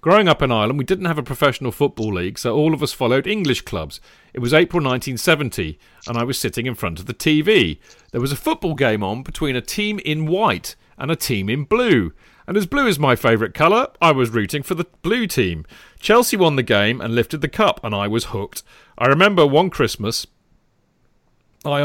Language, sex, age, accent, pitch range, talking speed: English, male, 40-59, British, 115-160 Hz, 215 wpm